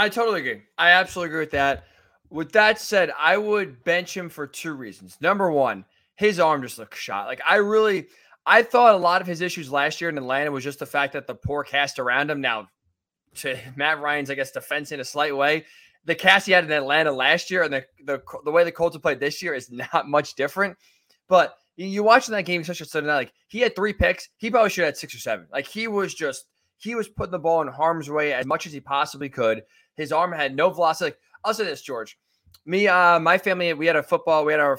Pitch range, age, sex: 135-180 Hz, 20-39, male